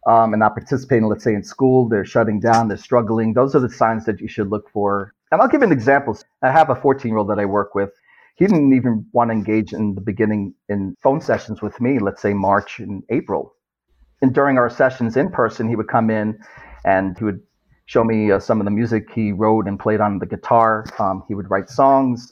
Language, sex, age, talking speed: English, male, 40-59, 235 wpm